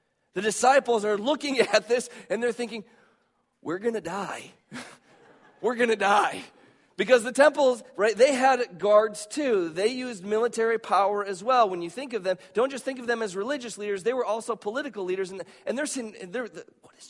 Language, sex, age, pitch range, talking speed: English, male, 40-59, 170-240 Hz, 190 wpm